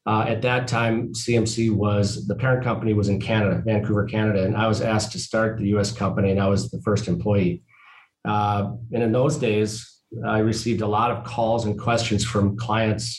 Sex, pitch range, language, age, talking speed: male, 105-120 Hz, English, 40-59, 200 wpm